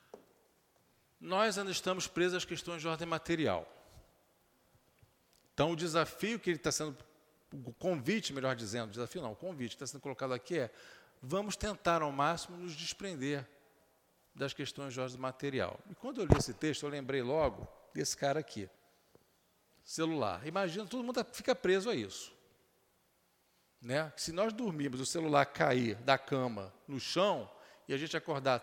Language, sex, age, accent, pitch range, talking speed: Portuguese, male, 50-69, Brazilian, 135-190 Hz, 160 wpm